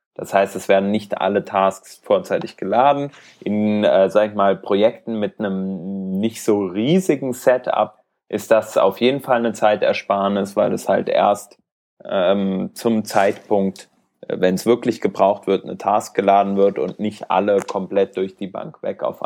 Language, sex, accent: German, male, German